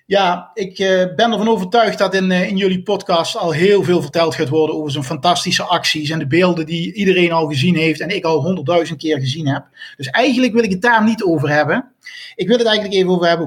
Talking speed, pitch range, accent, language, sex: 225 wpm, 170-200 Hz, Dutch, Dutch, male